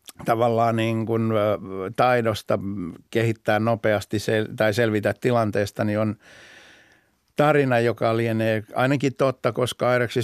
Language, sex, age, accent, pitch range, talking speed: Finnish, male, 60-79, native, 105-125 Hz, 110 wpm